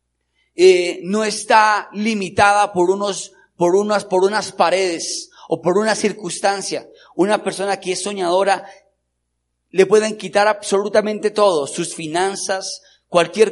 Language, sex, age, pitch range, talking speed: Spanish, male, 40-59, 185-225 Hz, 125 wpm